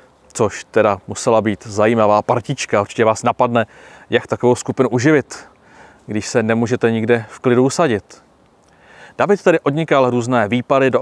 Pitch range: 115-145 Hz